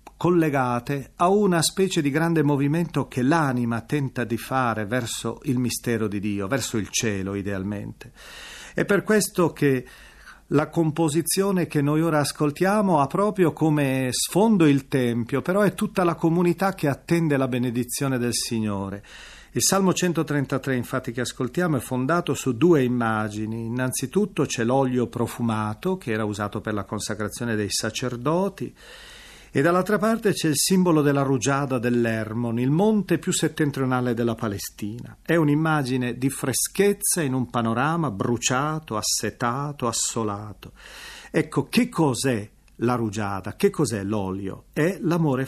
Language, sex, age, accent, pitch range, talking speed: Italian, male, 40-59, native, 115-165 Hz, 140 wpm